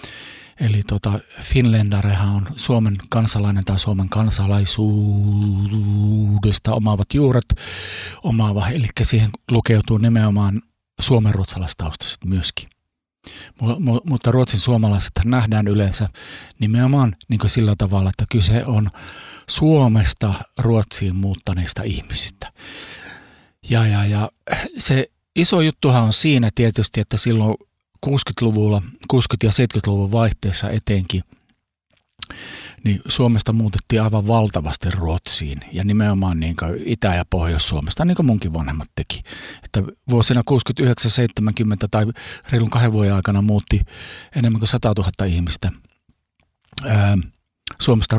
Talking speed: 105 wpm